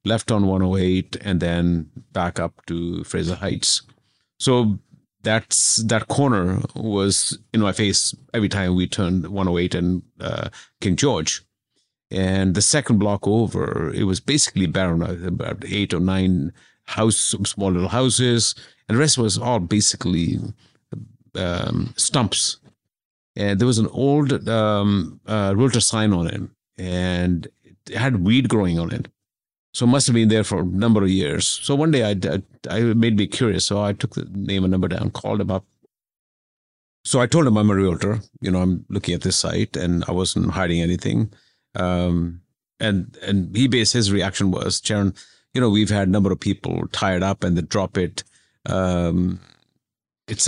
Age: 50-69